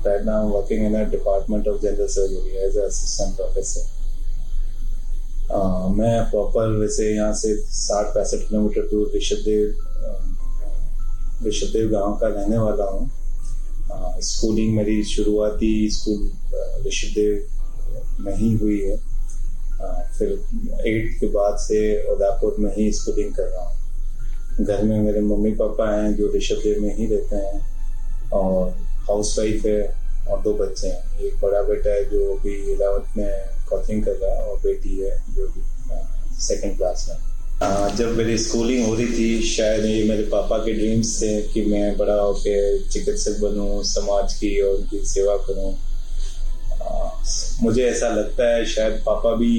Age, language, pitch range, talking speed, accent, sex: 30-49, Hindi, 105-115 Hz, 145 wpm, native, male